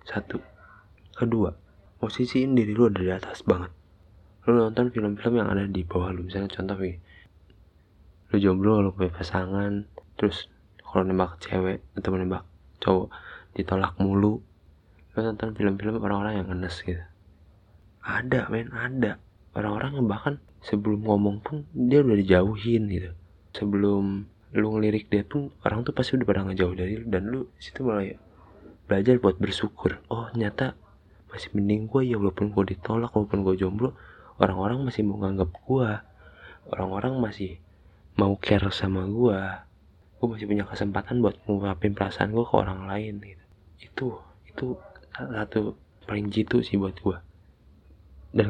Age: 20-39